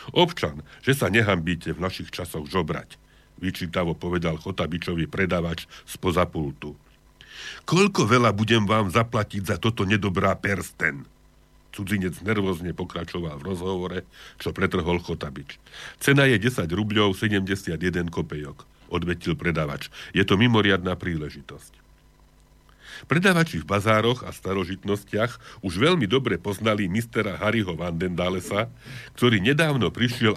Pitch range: 90-110 Hz